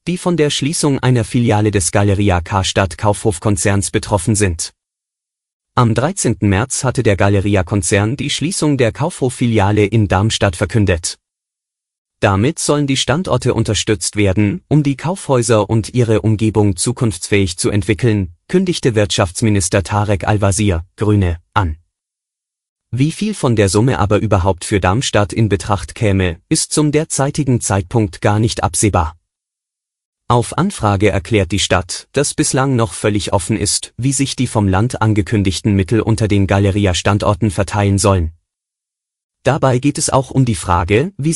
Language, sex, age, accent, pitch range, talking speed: German, male, 30-49, German, 100-120 Hz, 140 wpm